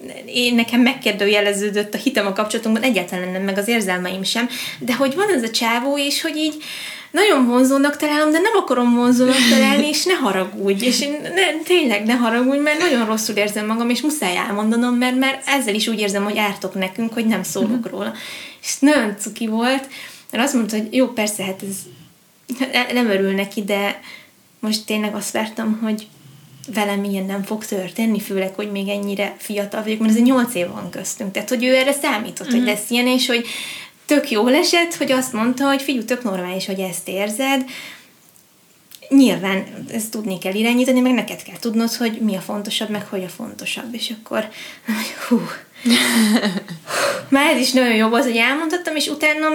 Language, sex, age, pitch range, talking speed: Hungarian, female, 20-39, 205-260 Hz, 180 wpm